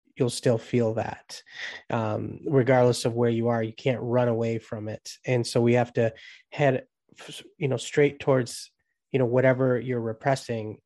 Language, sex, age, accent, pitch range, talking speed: English, male, 20-39, American, 115-130 Hz, 170 wpm